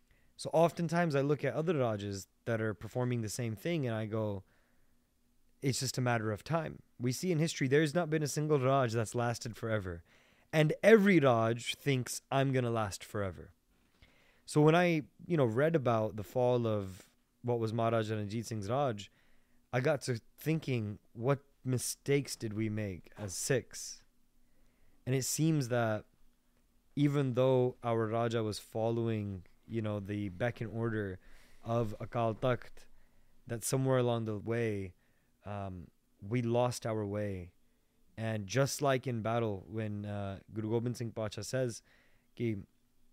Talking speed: 155 wpm